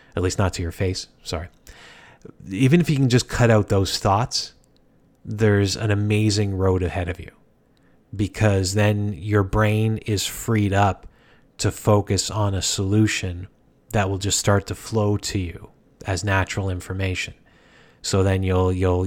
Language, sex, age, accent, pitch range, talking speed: English, male, 30-49, American, 95-110 Hz, 155 wpm